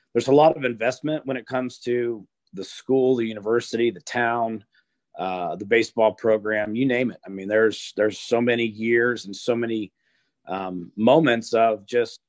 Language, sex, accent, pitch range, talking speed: English, male, American, 105-125 Hz, 175 wpm